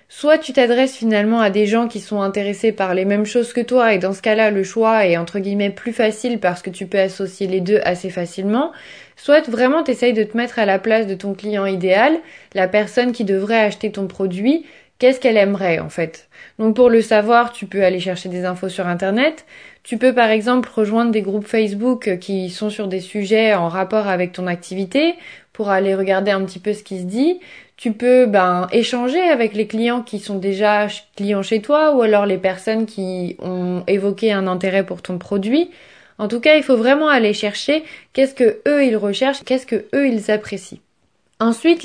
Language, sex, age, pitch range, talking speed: French, female, 20-39, 195-245 Hz, 210 wpm